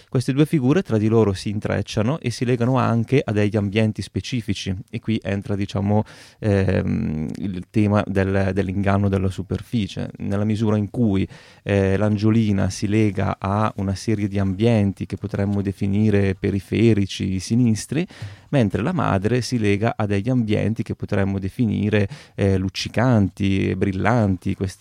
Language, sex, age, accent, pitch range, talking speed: Italian, male, 30-49, native, 100-120 Hz, 140 wpm